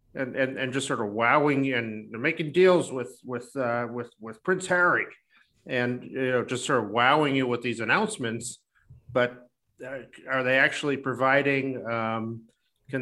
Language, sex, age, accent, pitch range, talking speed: English, male, 50-69, American, 120-150 Hz, 170 wpm